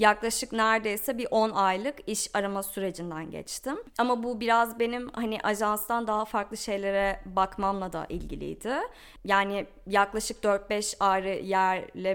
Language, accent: Turkish, native